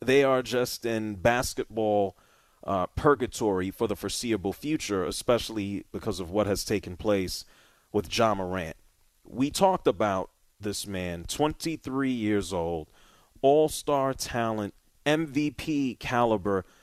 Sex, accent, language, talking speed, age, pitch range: male, American, English, 120 wpm, 30-49, 100-125 Hz